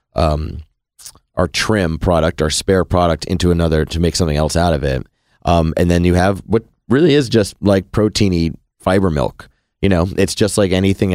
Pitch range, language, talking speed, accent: 80-100 Hz, English, 190 wpm, American